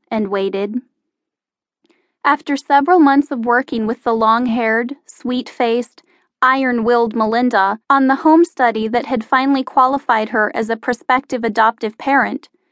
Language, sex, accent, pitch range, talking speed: English, female, American, 225-310 Hz, 125 wpm